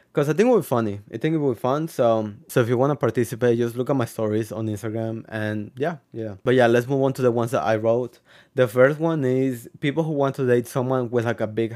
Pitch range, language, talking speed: 115-140 Hz, English, 280 wpm